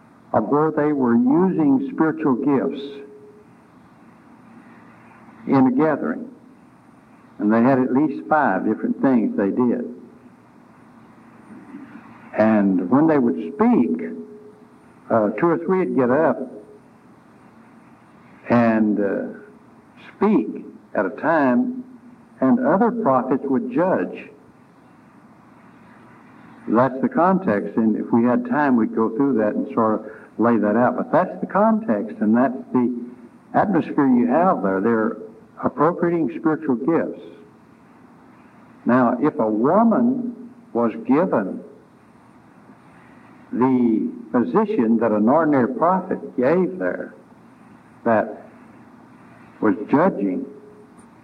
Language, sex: English, male